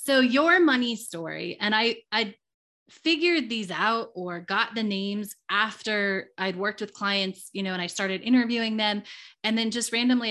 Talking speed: 175 wpm